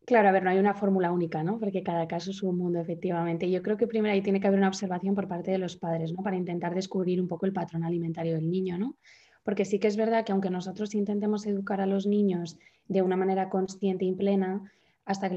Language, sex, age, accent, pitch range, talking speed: Spanish, female, 20-39, Spanish, 175-200 Hz, 255 wpm